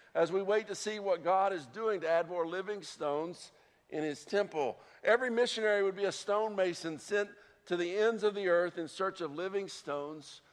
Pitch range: 165-205 Hz